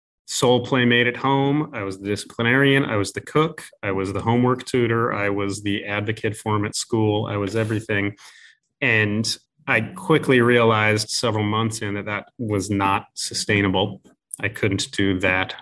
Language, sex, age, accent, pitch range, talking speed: English, male, 30-49, American, 100-125 Hz, 165 wpm